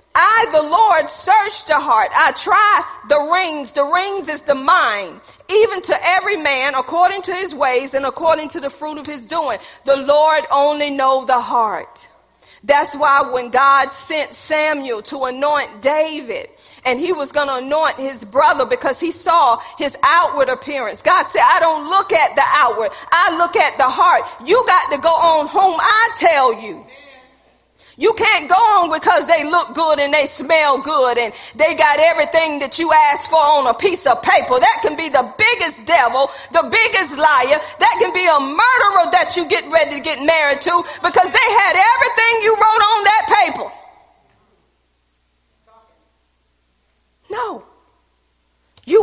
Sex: female